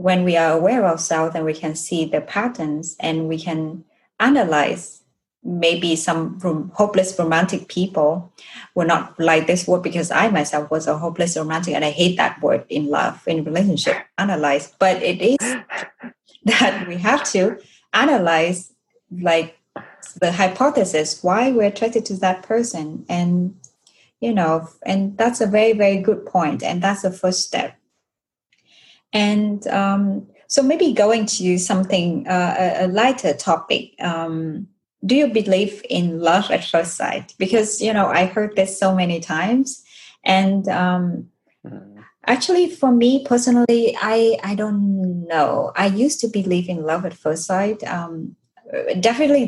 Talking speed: 155 wpm